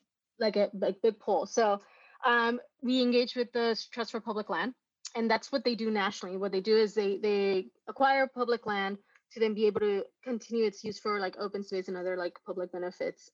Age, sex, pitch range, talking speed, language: 20-39, female, 195-240 Hz, 210 wpm, English